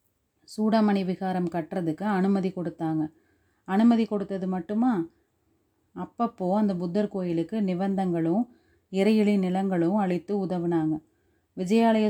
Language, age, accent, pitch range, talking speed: Tamil, 30-49, native, 175-200 Hz, 90 wpm